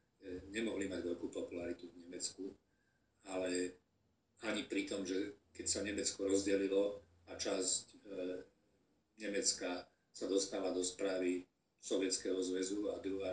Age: 40-59